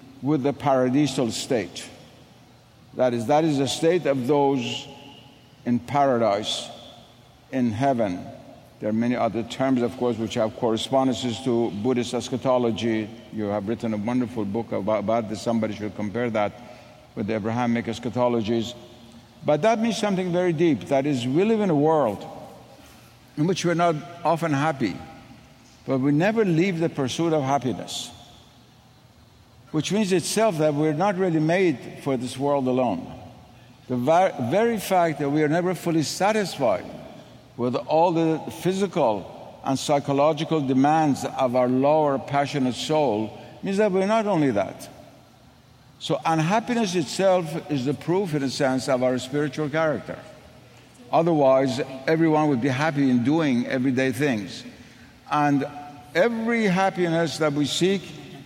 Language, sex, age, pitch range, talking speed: English, male, 60-79, 120-160 Hz, 145 wpm